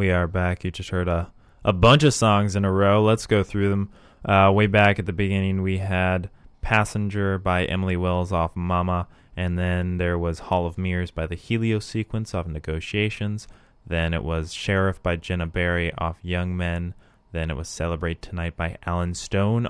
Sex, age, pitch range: male, 20-39, 85-100 Hz